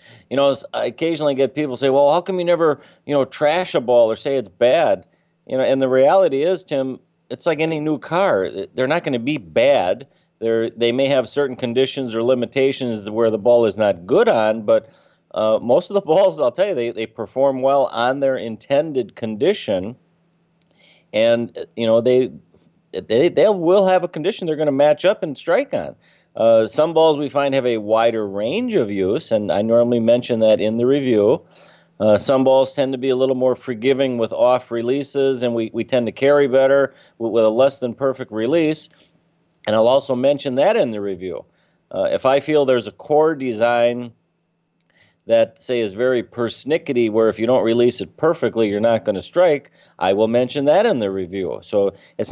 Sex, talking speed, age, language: male, 200 wpm, 40-59, English